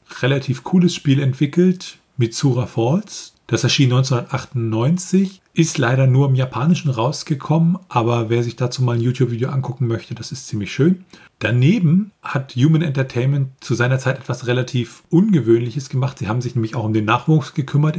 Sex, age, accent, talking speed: male, 40-59, German, 160 wpm